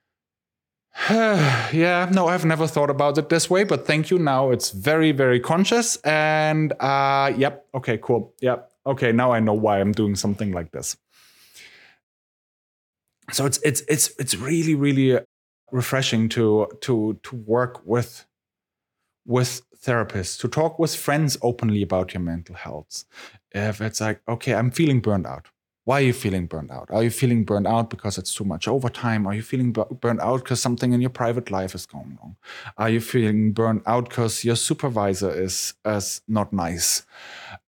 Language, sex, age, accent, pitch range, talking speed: English, male, 30-49, German, 105-135 Hz, 170 wpm